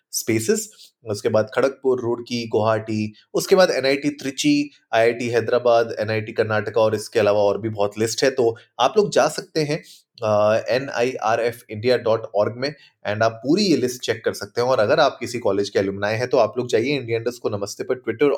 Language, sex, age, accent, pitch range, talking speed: Hindi, male, 30-49, native, 110-150 Hz, 205 wpm